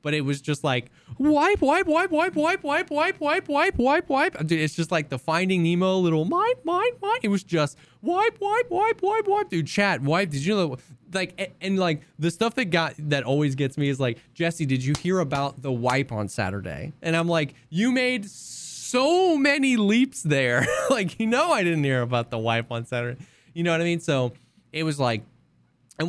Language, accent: English, American